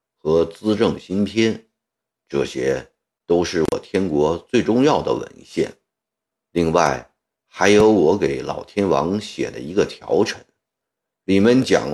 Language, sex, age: Chinese, male, 50-69